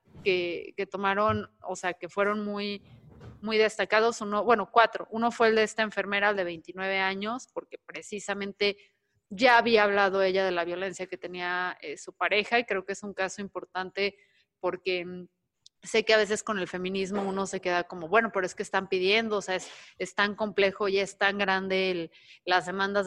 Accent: Mexican